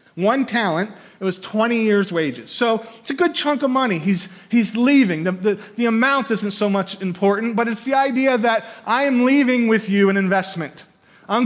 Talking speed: 200 wpm